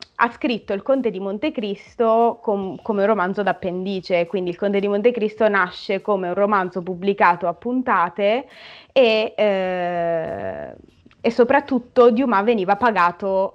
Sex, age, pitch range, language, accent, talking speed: female, 20-39, 190-240 Hz, Italian, native, 135 wpm